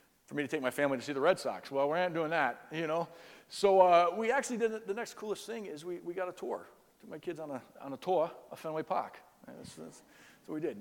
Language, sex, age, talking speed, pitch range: English, male, 40-59, 270 wpm, 130-200 Hz